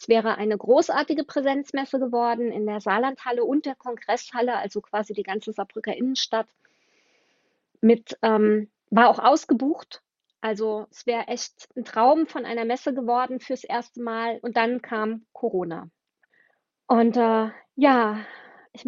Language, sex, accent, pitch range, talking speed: German, female, German, 225-265 Hz, 140 wpm